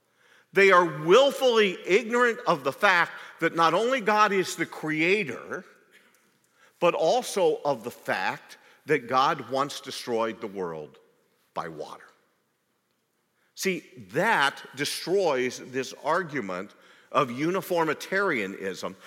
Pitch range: 135-205 Hz